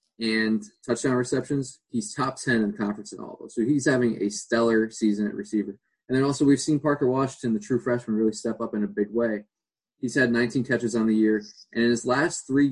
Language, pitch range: English, 110-125 Hz